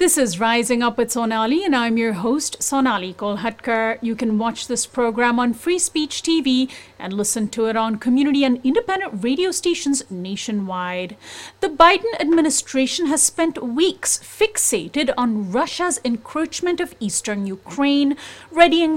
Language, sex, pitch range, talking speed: English, female, 230-315 Hz, 145 wpm